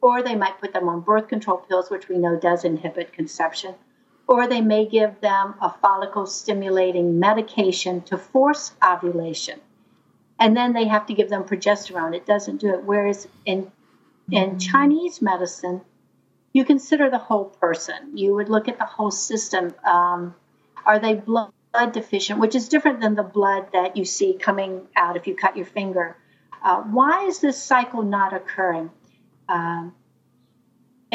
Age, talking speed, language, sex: 60-79, 165 wpm, English, female